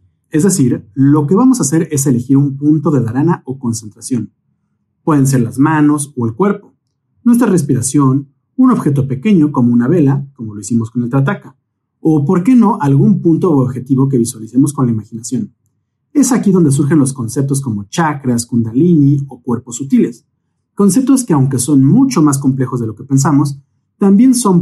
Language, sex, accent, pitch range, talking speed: Spanish, male, Mexican, 125-165 Hz, 180 wpm